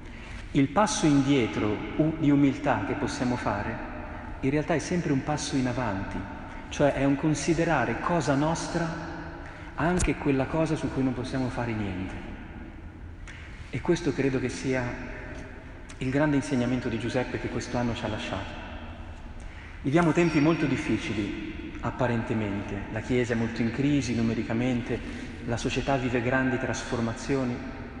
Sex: male